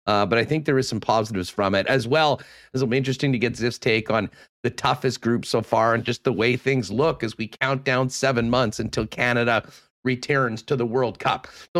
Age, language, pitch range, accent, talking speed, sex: 40-59, English, 125-160 Hz, American, 235 wpm, male